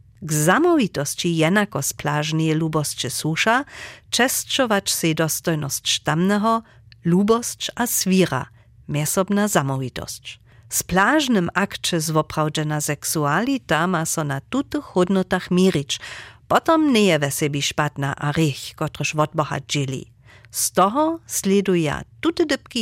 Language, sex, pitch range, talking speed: German, female, 140-215 Hz, 95 wpm